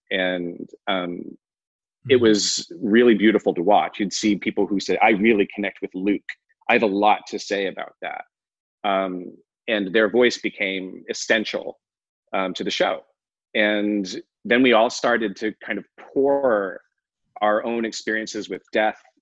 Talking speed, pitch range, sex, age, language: 155 wpm, 95-110 Hz, male, 30-49, English